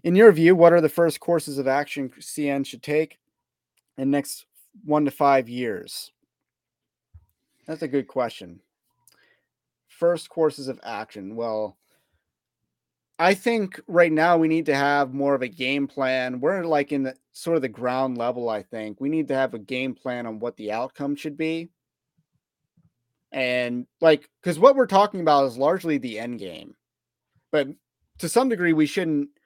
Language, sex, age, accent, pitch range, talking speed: English, male, 30-49, American, 130-160 Hz, 170 wpm